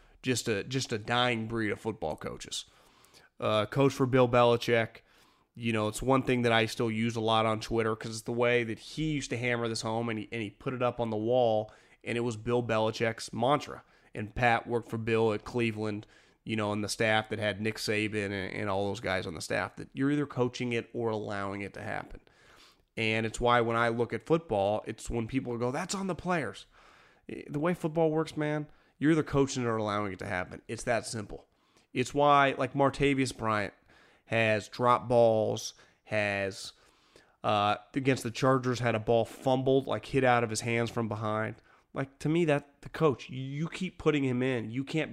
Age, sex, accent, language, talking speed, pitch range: 30-49, male, American, English, 210 wpm, 110-135 Hz